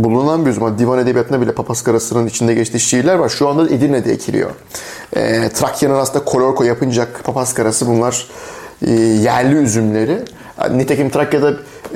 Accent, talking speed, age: native, 130 wpm, 30-49